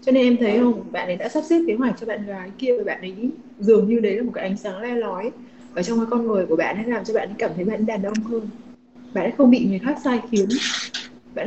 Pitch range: 205-250 Hz